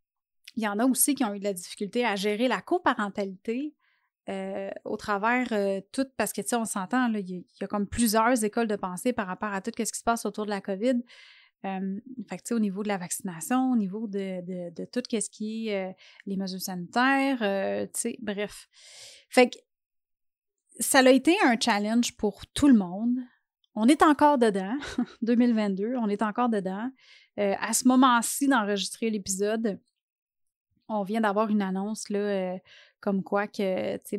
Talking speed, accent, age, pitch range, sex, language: 195 wpm, Canadian, 30-49, 205-250 Hz, female, French